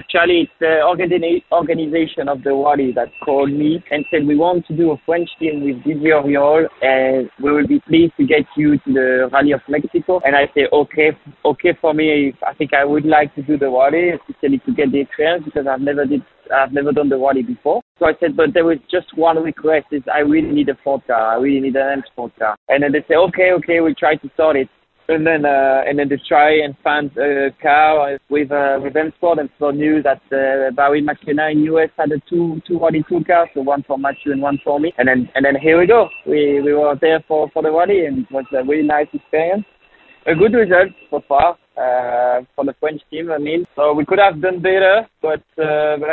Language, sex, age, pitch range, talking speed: English, male, 20-39, 140-160 Hz, 240 wpm